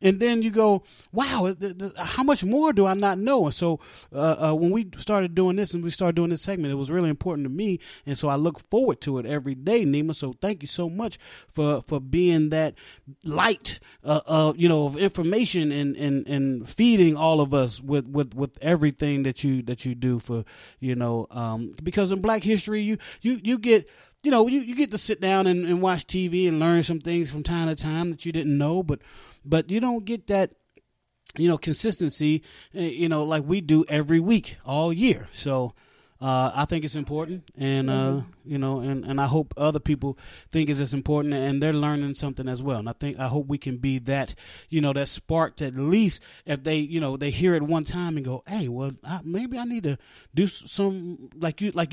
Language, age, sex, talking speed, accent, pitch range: English, 30-49, male, 220 wpm, American, 140-190 Hz